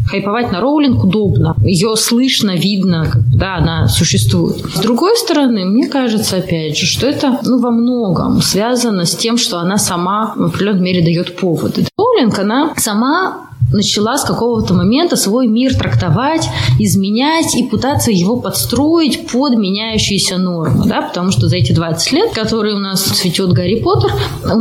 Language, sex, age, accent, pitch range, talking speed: Russian, female, 20-39, native, 175-250 Hz, 160 wpm